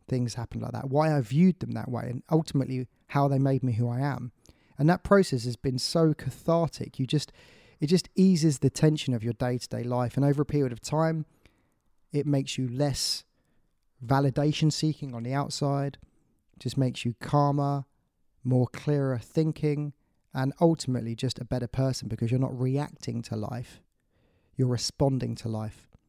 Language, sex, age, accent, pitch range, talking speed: English, male, 20-39, British, 125-155 Hz, 175 wpm